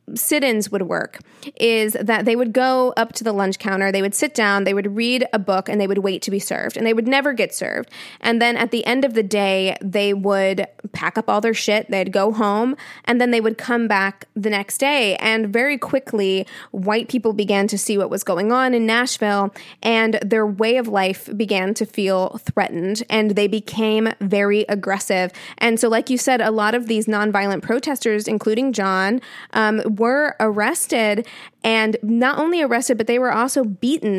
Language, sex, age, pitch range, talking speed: English, female, 20-39, 200-240 Hz, 200 wpm